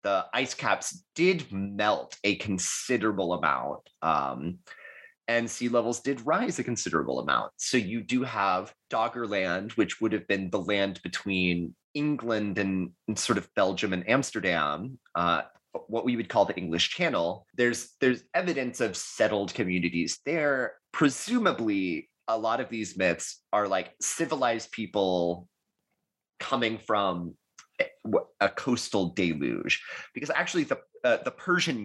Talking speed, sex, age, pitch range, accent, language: 140 wpm, male, 30-49, 95-135 Hz, American, English